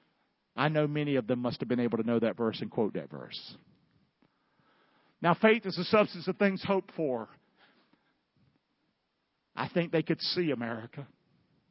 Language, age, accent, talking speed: English, 50-69, American, 165 wpm